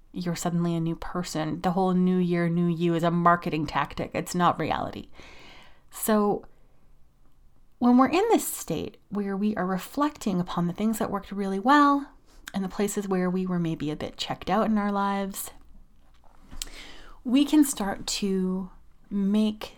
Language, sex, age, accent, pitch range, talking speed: English, female, 30-49, American, 175-215 Hz, 165 wpm